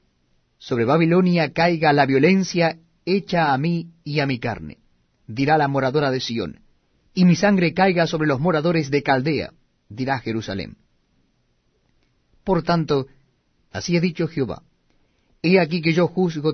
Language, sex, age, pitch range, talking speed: Spanish, male, 40-59, 125-170 Hz, 140 wpm